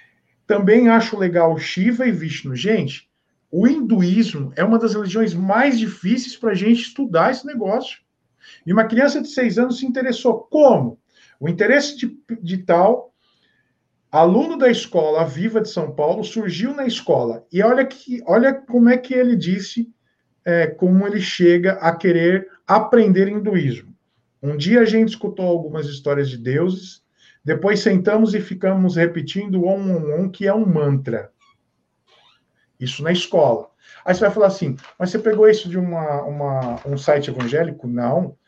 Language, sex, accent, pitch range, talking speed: Portuguese, male, Brazilian, 165-225 Hz, 155 wpm